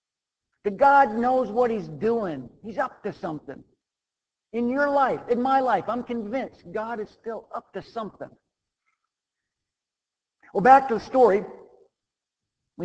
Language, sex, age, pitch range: English, male, 50-69, 155-220 Hz